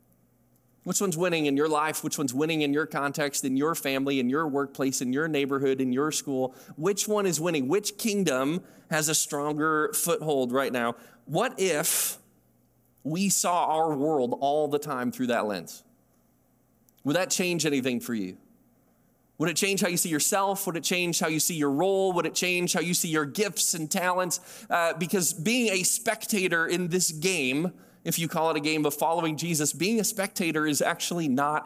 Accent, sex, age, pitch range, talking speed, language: American, male, 20-39, 145-185 Hz, 195 wpm, English